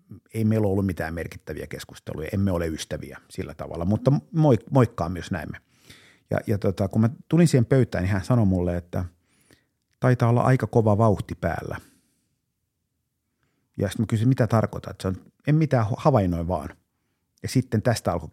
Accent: native